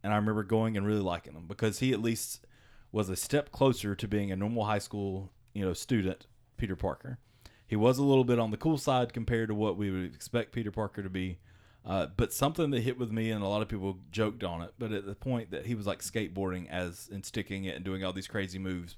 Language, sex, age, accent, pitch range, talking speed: English, male, 30-49, American, 95-115 Hz, 255 wpm